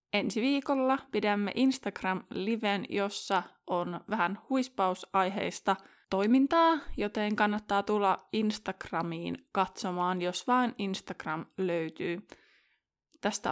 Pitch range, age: 190-230 Hz, 20-39